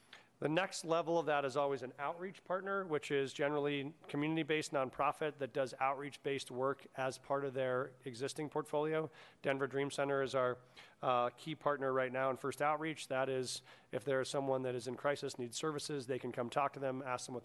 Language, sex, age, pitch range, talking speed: English, male, 40-59, 125-145 Hz, 205 wpm